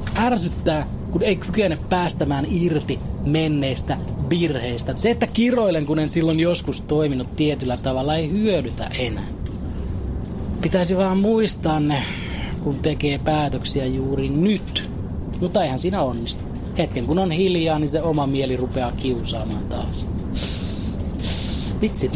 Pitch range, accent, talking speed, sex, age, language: 125-165 Hz, native, 125 wpm, male, 30-49, Finnish